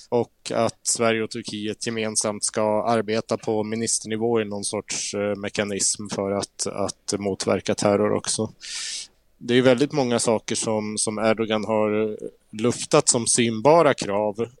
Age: 20-39